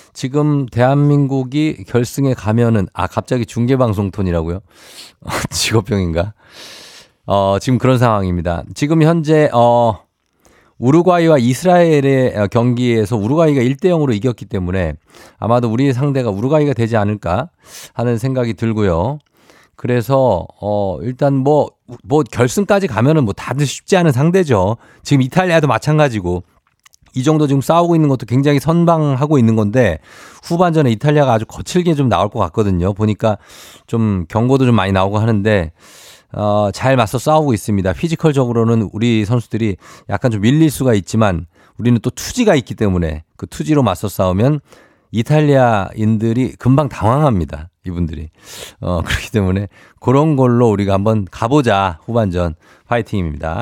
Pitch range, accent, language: 100-140 Hz, native, Korean